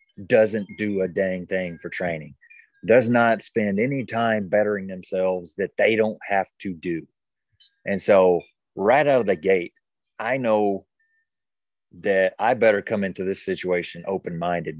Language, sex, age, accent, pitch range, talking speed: English, male, 30-49, American, 95-125 Hz, 150 wpm